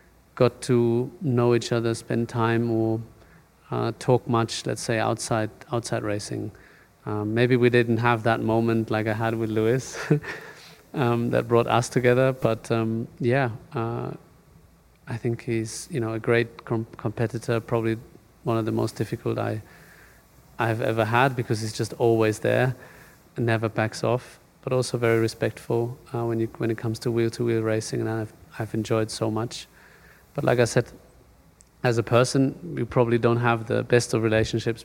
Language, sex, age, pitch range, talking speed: English, male, 30-49, 110-125 Hz, 170 wpm